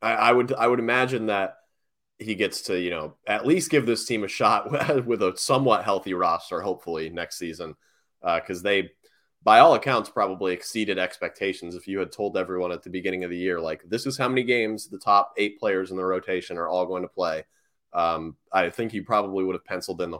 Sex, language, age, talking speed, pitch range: male, English, 30-49, 220 wpm, 90-115 Hz